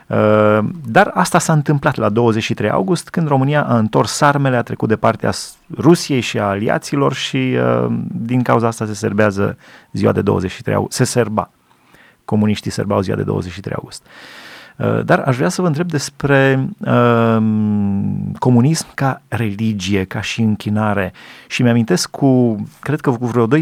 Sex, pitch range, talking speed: male, 110-135 Hz, 150 wpm